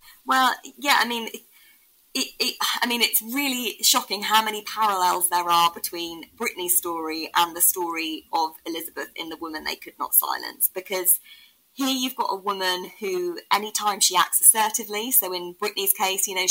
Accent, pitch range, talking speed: British, 175-215 Hz, 175 wpm